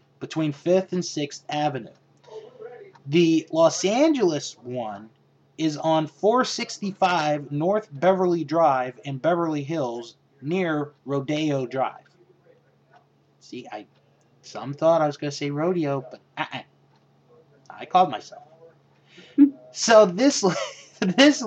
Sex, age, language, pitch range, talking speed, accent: male, 30-49, English, 145-205 Hz, 105 wpm, American